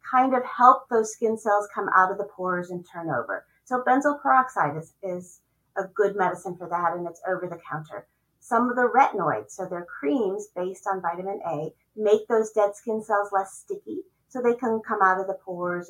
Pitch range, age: 180-225 Hz, 30-49